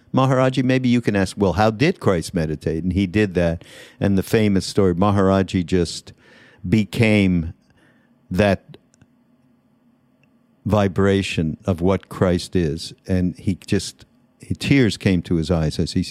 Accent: American